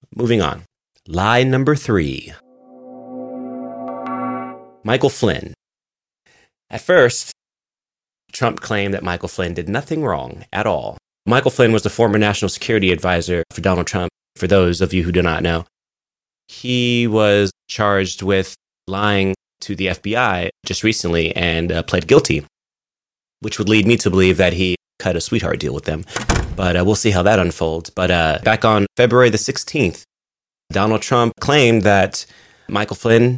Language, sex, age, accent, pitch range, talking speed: English, male, 30-49, American, 85-110 Hz, 155 wpm